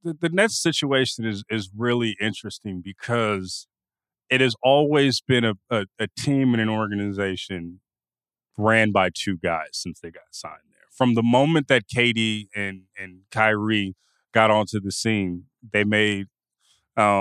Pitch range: 100-125 Hz